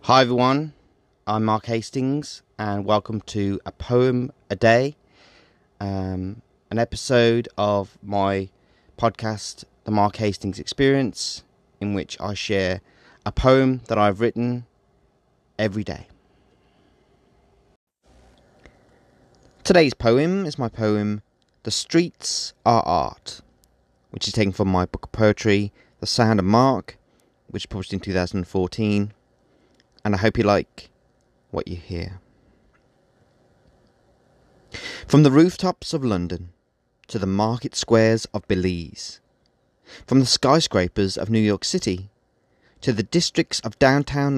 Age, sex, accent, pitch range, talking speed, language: 30-49, male, British, 100-130 Hz, 120 wpm, English